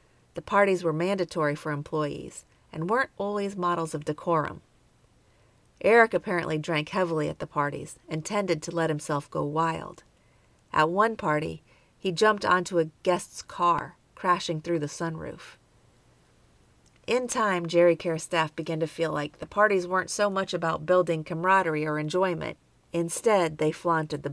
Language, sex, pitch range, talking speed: English, female, 155-185 Hz, 155 wpm